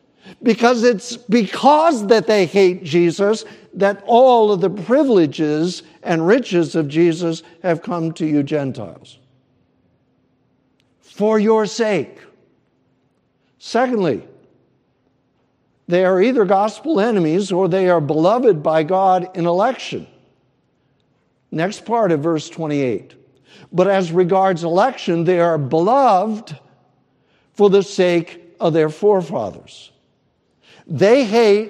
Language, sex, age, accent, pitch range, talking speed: English, male, 60-79, American, 165-205 Hz, 110 wpm